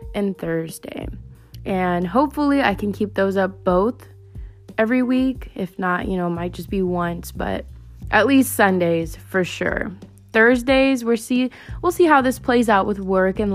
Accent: American